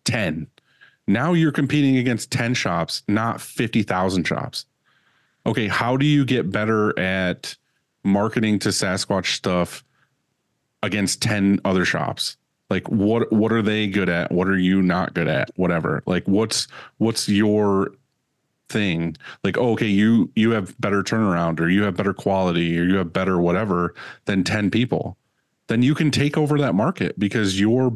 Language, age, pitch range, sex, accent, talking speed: English, 30-49, 95-120 Hz, male, American, 160 wpm